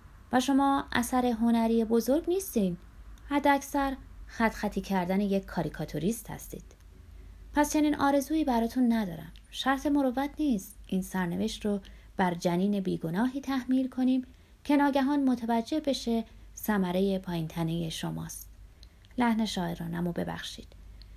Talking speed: 115 wpm